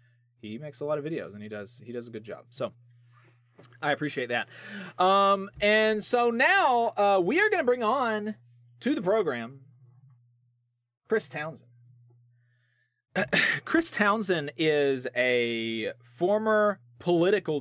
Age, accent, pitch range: 30-49, American, 120-150 Hz